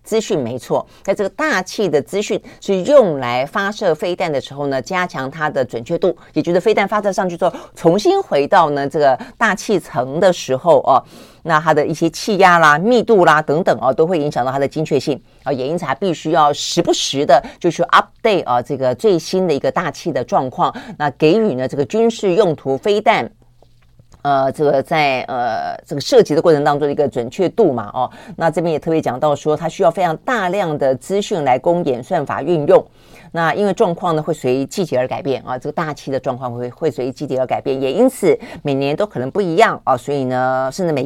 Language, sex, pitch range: Chinese, female, 135-190 Hz